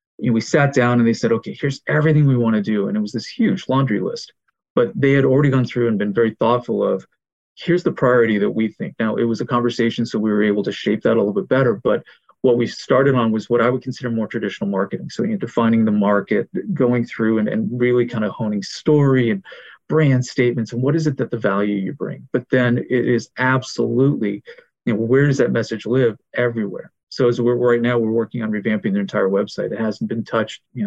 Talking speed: 235 wpm